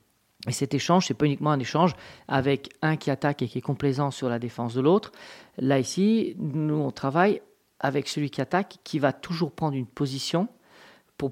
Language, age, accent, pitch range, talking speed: French, 40-59, French, 140-175 Hz, 200 wpm